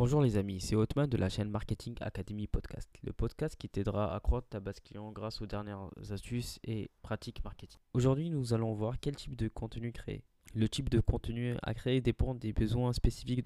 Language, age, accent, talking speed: French, 20-39, French, 205 wpm